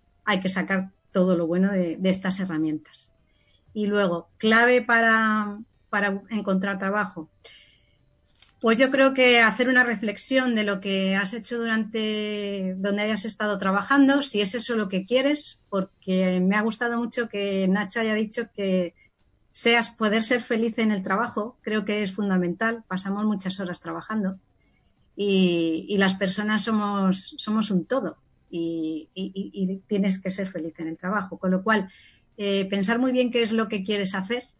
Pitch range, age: 190-230 Hz, 30-49